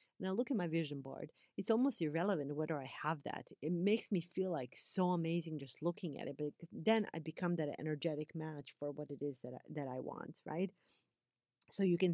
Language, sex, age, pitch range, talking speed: English, female, 30-49, 155-185 Hz, 215 wpm